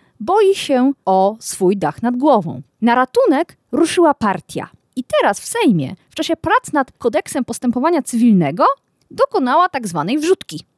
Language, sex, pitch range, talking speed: Polish, female, 210-345 Hz, 145 wpm